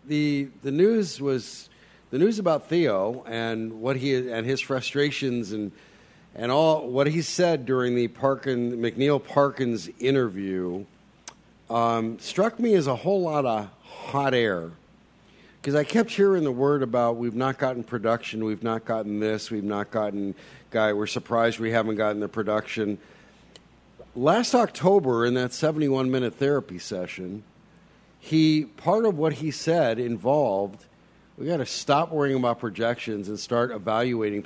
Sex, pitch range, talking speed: male, 115-160 Hz, 150 wpm